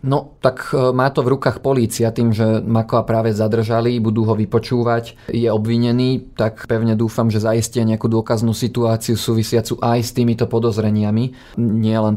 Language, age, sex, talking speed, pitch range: Slovak, 30-49, male, 155 wpm, 105-115 Hz